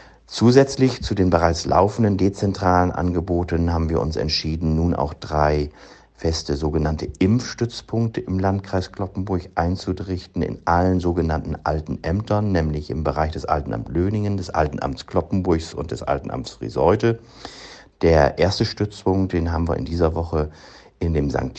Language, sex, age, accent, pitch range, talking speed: German, male, 60-79, German, 75-95 Hz, 140 wpm